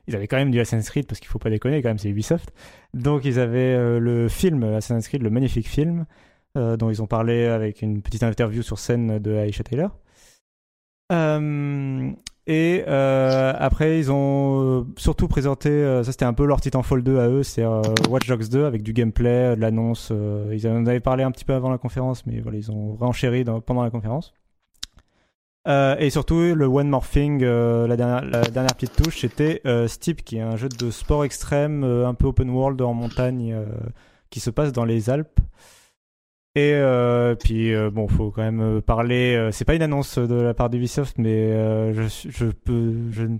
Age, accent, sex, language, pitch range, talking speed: 30-49, French, male, French, 110-135 Hz, 205 wpm